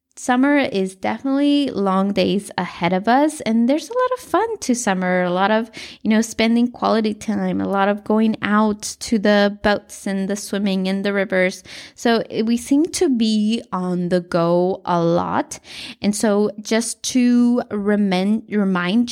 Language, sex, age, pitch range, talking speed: English, female, 20-39, 190-255 Hz, 165 wpm